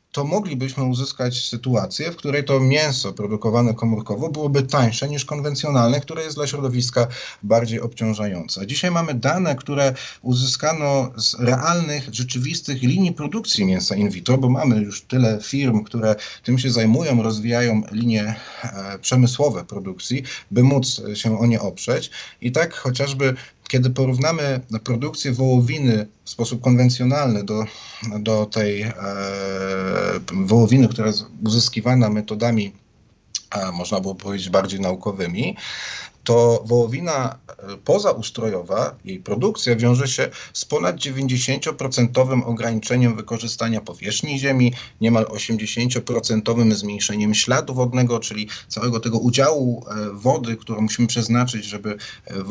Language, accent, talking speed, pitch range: Polish, native, 120 wpm, 110-130 Hz